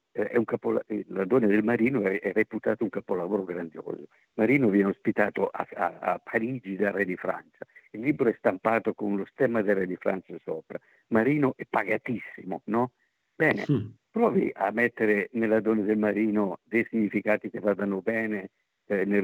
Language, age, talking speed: Italian, 50-69, 170 wpm